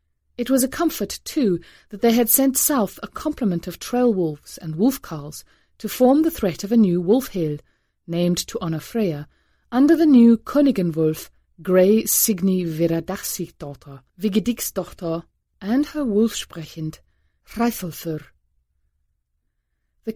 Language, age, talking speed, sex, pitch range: English, 30-49, 115 wpm, female, 165-230 Hz